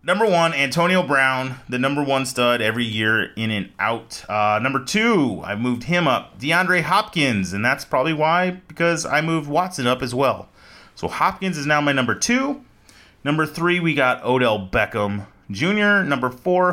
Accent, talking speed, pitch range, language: American, 175 wpm, 115-170 Hz, English